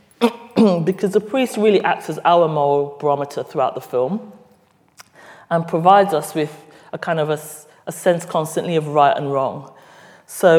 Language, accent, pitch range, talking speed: English, British, 150-190 Hz, 160 wpm